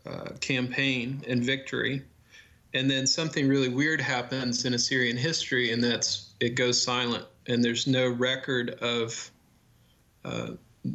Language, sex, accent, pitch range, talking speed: English, male, American, 115-130 Hz, 130 wpm